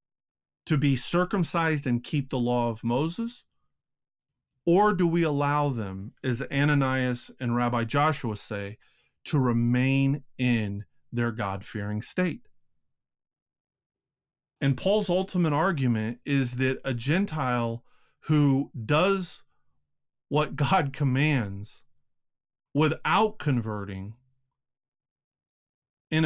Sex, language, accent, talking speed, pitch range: male, English, American, 95 wpm, 120-155 Hz